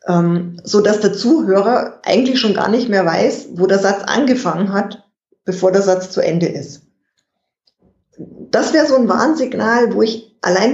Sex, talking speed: female, 160 wpm